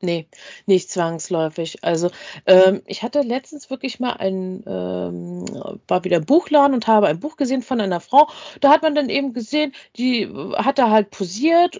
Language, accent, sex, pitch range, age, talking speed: German, German, female, 190-285 Hz, 40-59, 175 wpm